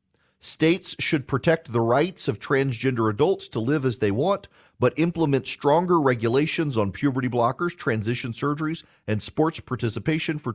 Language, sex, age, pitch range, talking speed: English, male, 40-59, 100-145 Hz, 150 wpm